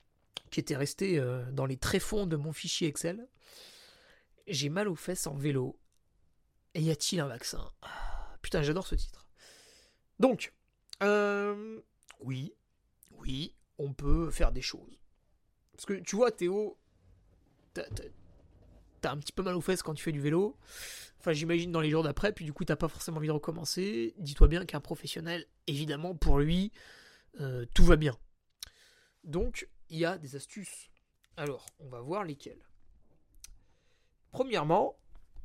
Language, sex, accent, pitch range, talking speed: French, male, French, 140-185 Hz, 150 wpm